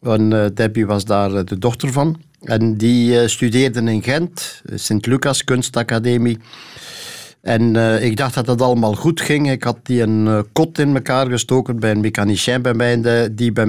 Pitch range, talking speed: 115-140 Hz, 155 wpm